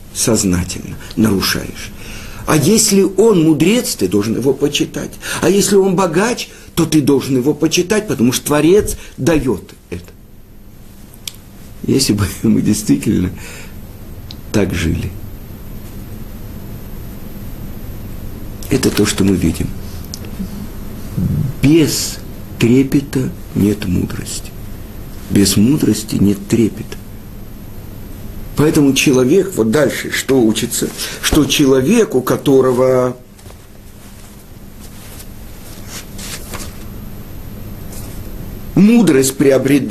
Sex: male